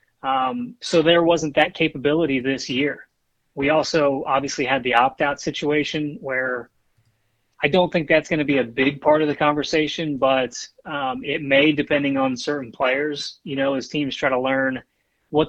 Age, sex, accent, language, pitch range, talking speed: 30-49, male, American, English, 135-160 Hz, 180 wpm